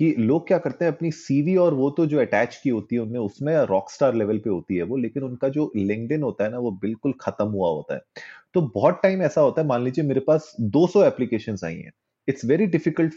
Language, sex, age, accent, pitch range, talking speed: Hindi, male, 30-49, native, 115-160 Hz, 140 wpm